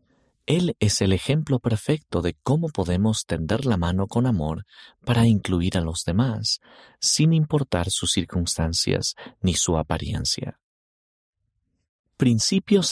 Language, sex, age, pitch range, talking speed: Spanish, male, 40-59, 90-130 Hz, 120 wpm